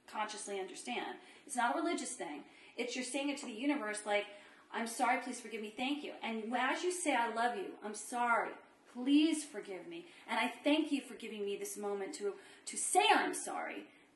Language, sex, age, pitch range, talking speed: English, female, 30-49, 215-295 Hz, 205 wpm